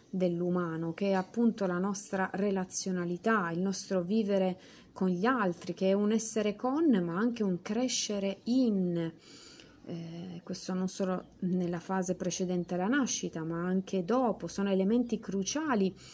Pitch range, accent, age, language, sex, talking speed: 180-230 Hz, native, 30-49, Italian, female, 140 wpm